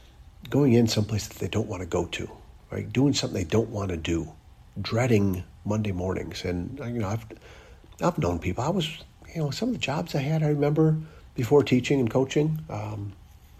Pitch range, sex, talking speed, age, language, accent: 90-125 Hz, male, 200 wpm, 50-69, English, American